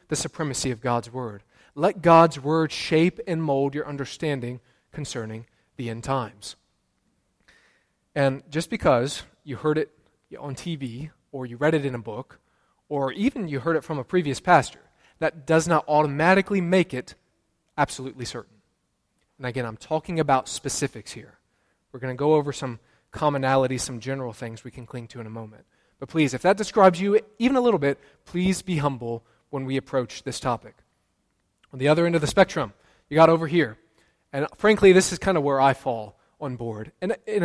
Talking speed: 185 wpm